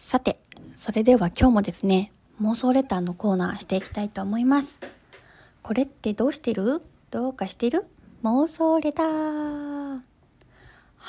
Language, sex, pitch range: Japanese, female, 205-260 Hz